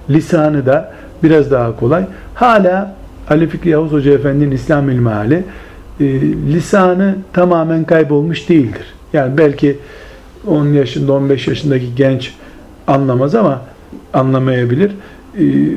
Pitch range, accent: 130-170 Hz, native